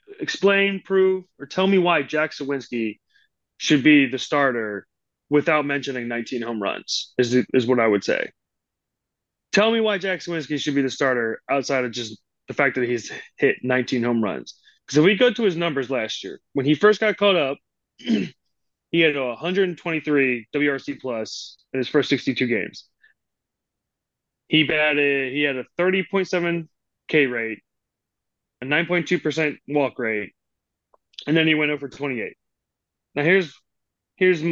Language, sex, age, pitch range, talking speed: English, male, 30-49, 125-165 Hz, 155 wpm